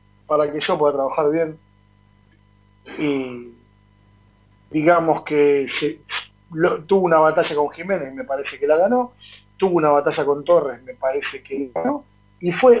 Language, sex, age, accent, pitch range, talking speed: Spanish, male, 40-59, Argentinian, 120-180 Hz, 155 wpm